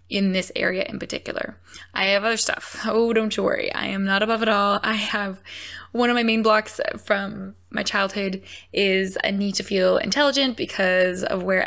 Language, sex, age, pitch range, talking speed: English, female, 20-39, 195-230 Hz, 195 wpm